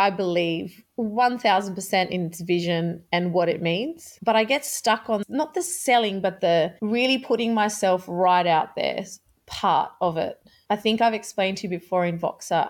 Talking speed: 180 wpm